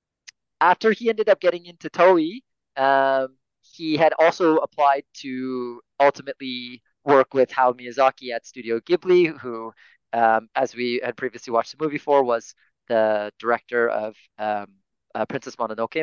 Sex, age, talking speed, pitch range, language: male, 30-49, 145 wpm, 120-160 Hz, English